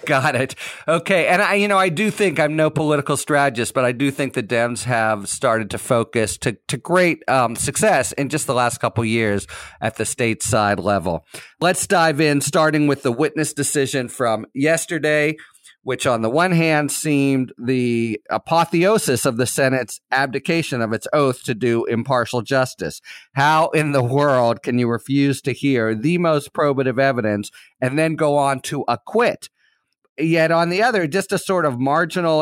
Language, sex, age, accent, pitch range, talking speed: English, male, 40-59, American, 120-155 Hz, 180 wpm